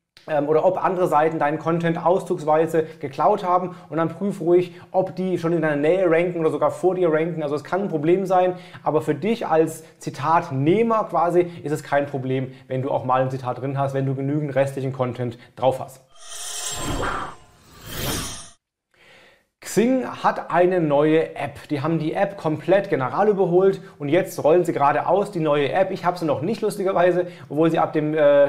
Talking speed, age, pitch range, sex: 180 wpm, 30-49, 150-185 Hz, male